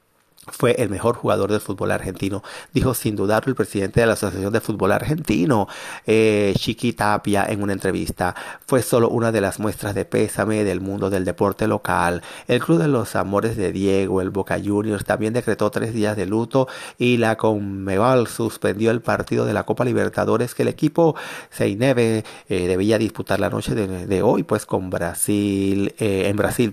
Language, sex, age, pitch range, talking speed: Spanish, male, 30-49, 100-120 Hz, 180 wpm